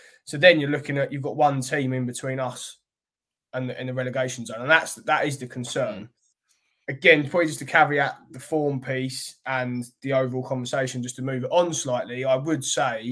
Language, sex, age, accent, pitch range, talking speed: English, male, 20-39, British, 125-145 Hz, 210 wpm